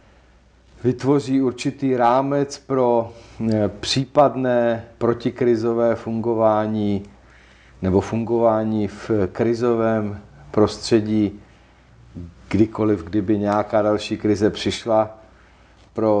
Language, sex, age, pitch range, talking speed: Czech, male, 50-69, 95-115 Hz, 70 wpm